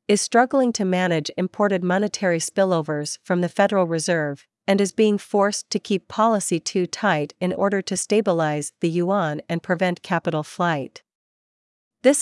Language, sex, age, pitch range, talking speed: Vietnamese, female, 40-59, 160-200 Hz, 150 wpm